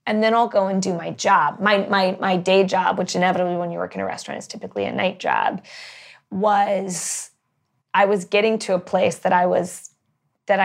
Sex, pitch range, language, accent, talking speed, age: female, 180-205 Hz, English, American, 210 wpm, 20-39